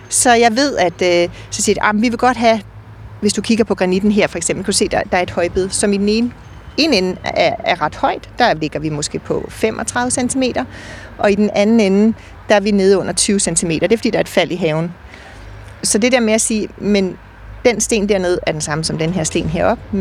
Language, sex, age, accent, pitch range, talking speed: Danish, female, 40-59, native, 180-215 Hz, 260 wpm